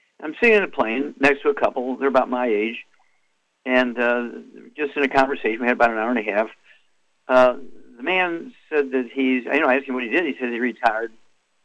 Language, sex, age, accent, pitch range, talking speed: English, male, 60-79, American, 110-135 Hz, 230 wpm